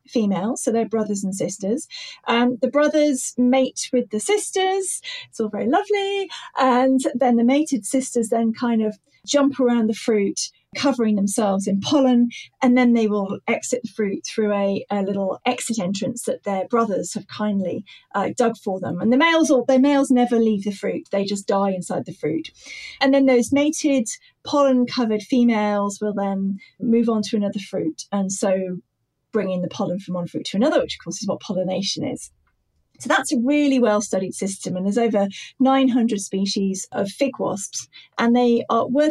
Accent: British